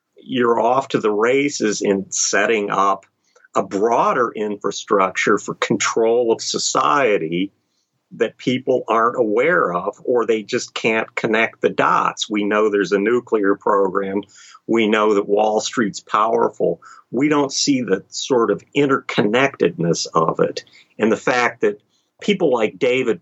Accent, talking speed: American, 140 wpm